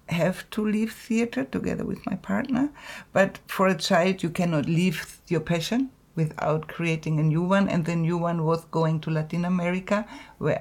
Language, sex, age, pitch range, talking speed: Czech, female, 60-79, 155-190 Hz, 180 wpm